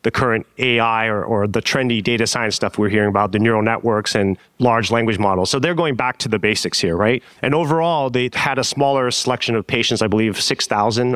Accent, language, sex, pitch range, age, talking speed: American, English, male, 110-135 Hz, 30-49, 220 wpm